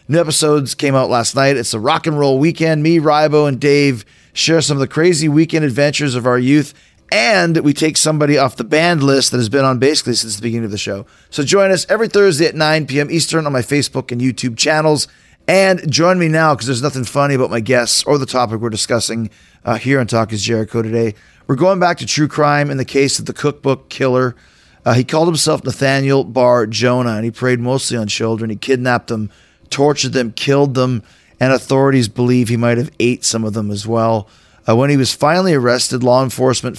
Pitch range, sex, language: 115-145 Hz, male, English